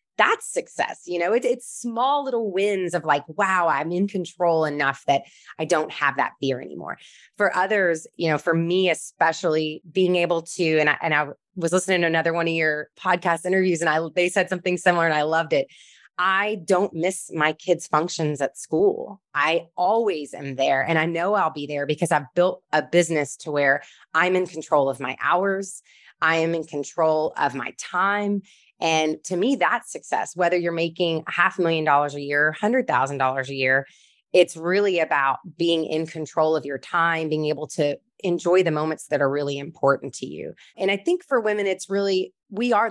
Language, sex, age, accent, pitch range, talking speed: English, female, 20-39, American, 150-185 Hz, 200 wpm